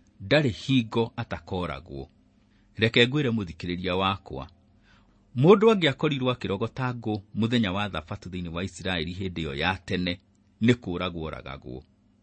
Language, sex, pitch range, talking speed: English, male, 95-130 Hz, 130 wpm